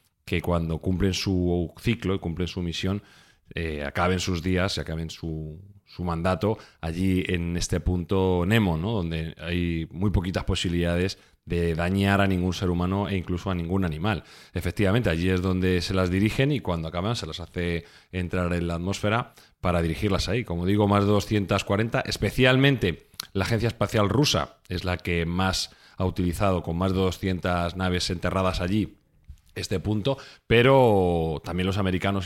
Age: 30-49